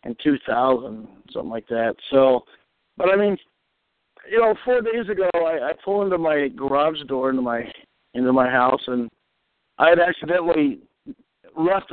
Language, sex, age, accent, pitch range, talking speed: English, male, 60-79, American, 135-205 Hz, 160 wpm